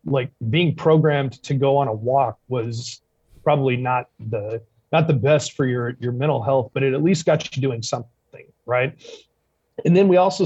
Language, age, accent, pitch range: English, 40-59, American, 125-155 Hz